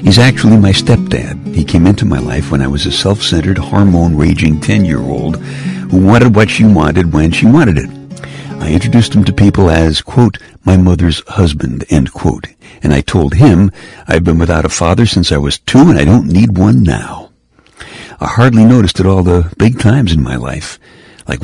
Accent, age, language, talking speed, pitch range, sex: American, 60-79, English, 190 wpm, 75-105 Hz, male